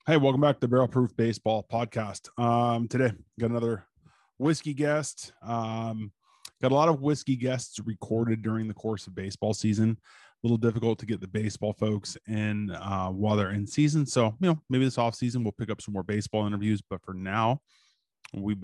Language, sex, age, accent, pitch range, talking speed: English, male, 20-39, American, 105-125 Hz, 190 wpm